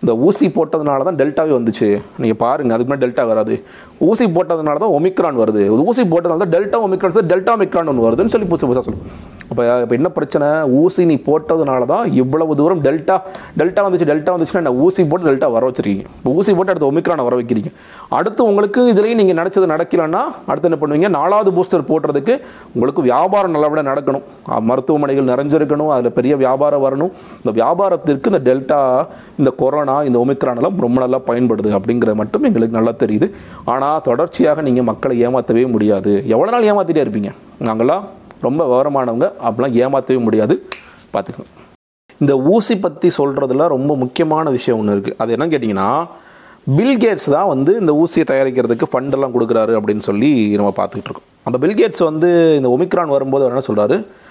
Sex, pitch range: male, 120-180 Hz